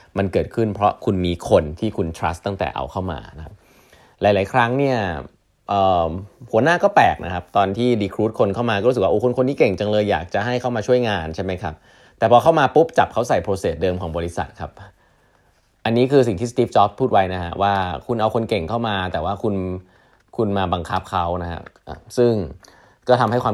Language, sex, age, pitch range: Thai, male, 20-39, 90-115 Hz